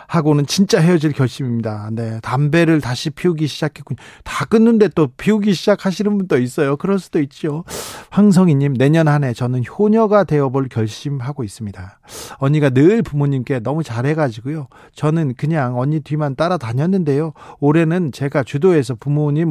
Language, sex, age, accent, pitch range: Korean, male, 40-59, native, 125-170 Hz